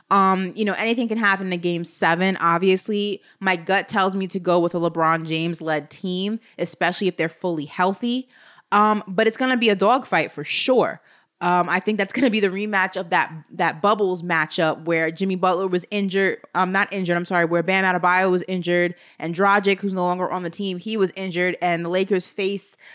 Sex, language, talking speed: female, English, 215 wpm